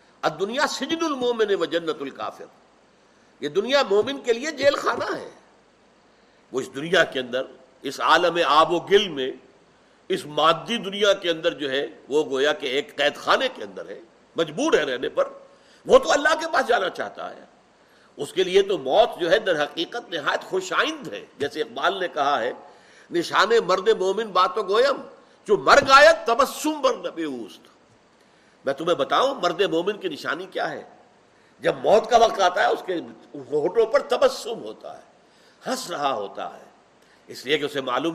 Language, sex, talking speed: Urdu, male, 180 wpm